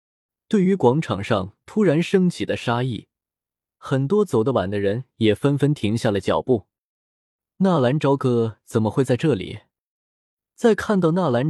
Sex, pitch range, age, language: male, 110-160 Hz, 20-39, Chinese